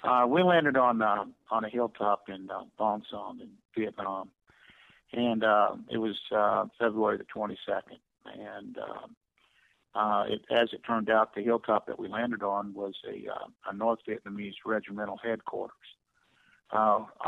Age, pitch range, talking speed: 60-79, 105-120 Hz, 155 wpm